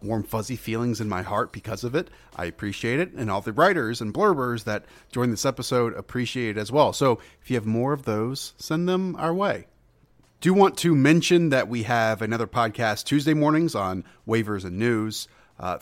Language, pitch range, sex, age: English, 105-135 Hz, male, 30-49